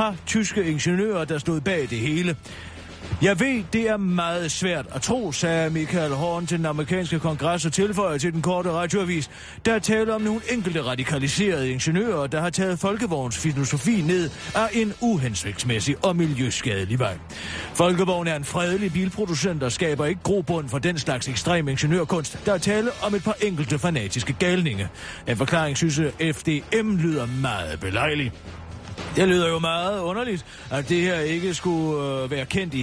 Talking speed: 170 wpm